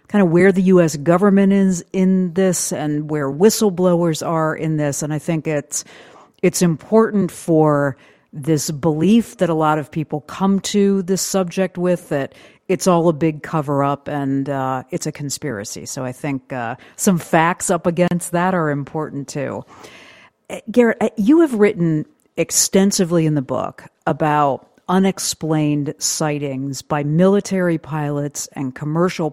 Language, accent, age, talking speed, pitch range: English, American, 50-69, 150 wpm, 145-185 Hz